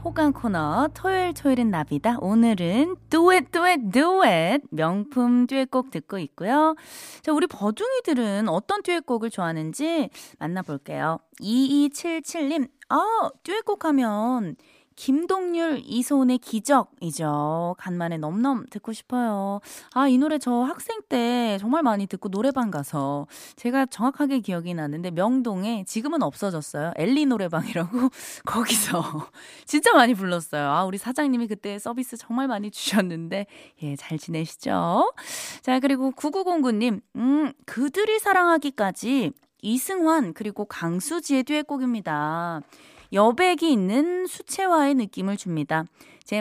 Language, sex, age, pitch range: Korean, female, 20-39, 190-295 Hz